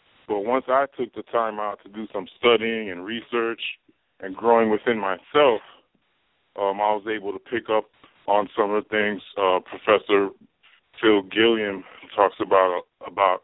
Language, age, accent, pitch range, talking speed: English, 20-39, American, 95-110 Hz, 160 wpm